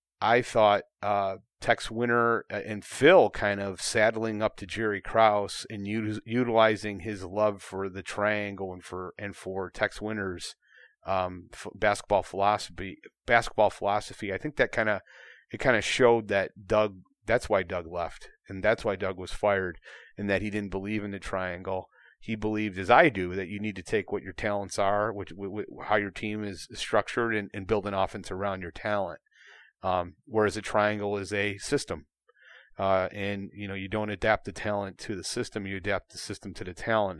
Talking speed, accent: 195 wpm, American